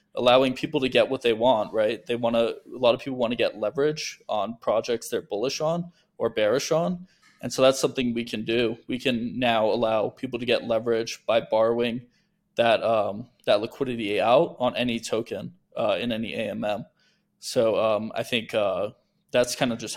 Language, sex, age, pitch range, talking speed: English, male, 20-39, 120-145 Hz, 195 wpm